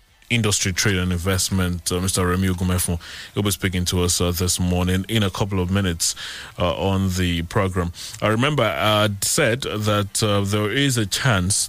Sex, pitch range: male, 90-105 Hz